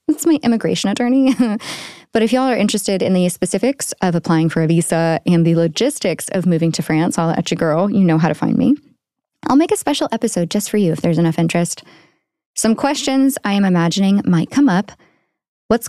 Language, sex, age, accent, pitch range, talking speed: English, female, 20-39, American, 170-235 Hz, 210 wpm